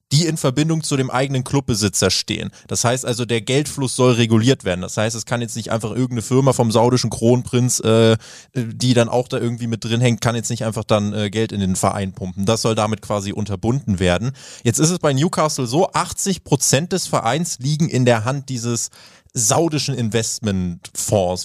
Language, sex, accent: German, male, German